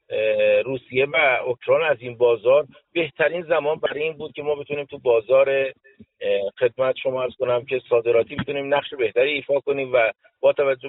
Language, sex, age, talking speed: Persian, male, 50-69, 165 wpm